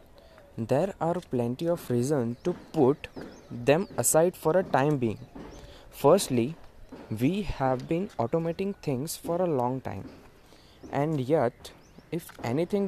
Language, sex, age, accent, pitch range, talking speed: Hindi, male, 20-39, native, 120-165 Hz, 125 wpm